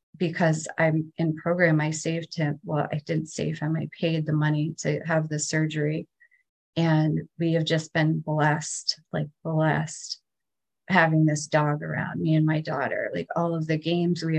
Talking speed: 175 wpm